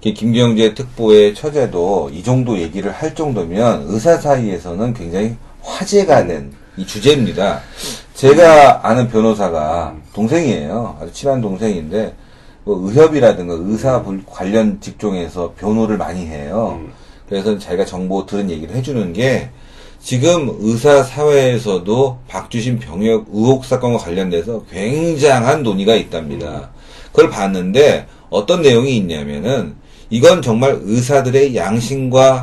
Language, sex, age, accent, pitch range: Korean, male, 40-59, native, 105-150 Hz